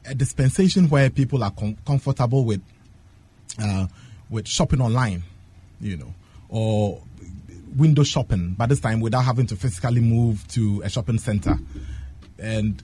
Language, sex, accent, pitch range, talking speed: English, male, Nigerian, 100-150 Hz, 140 wpm